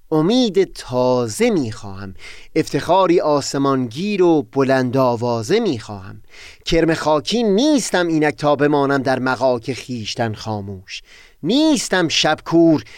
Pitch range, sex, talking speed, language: 130-185 Hz, male, 105 wpm, Persian